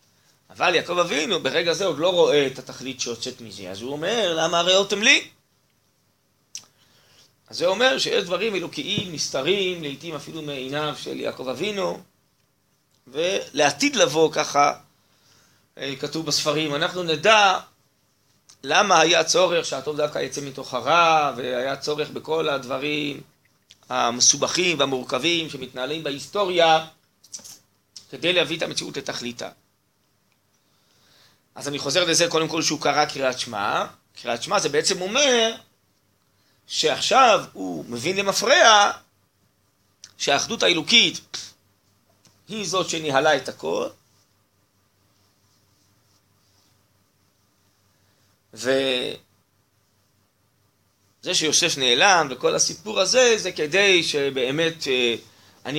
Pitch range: 100-165 Hz